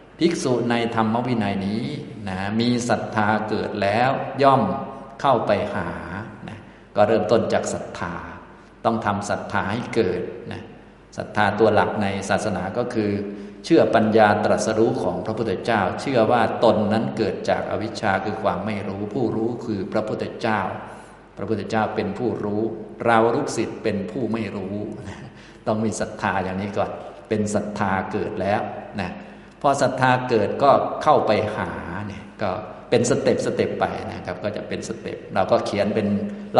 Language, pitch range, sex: Thai, 100-115 Hz, male